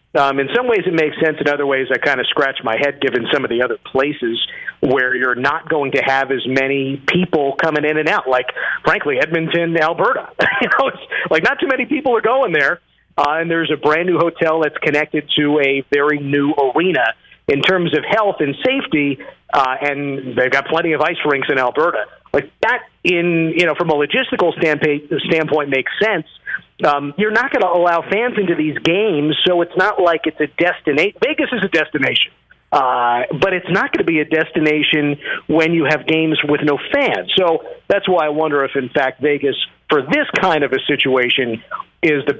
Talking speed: 205 wpm